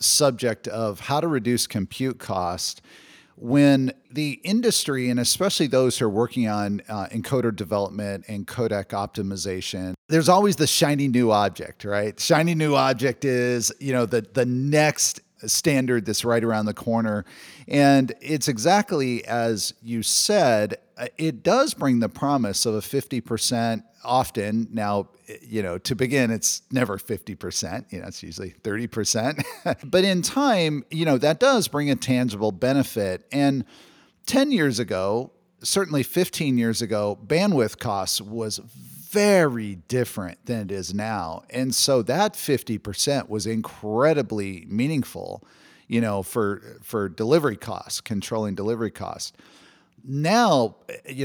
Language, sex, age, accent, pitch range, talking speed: English, male, 50-69, American, 110-140 Hz, 140 wpm